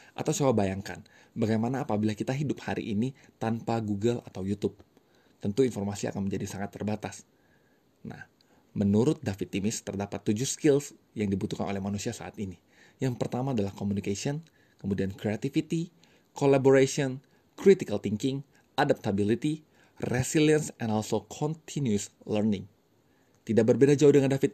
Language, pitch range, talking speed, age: English, 100-135 Hz, 125 wpm, 20-39